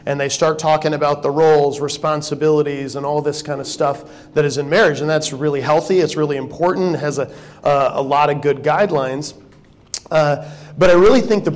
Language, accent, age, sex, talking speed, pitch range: English, American, 40-59, male, 200 wpm, 135-155 Hz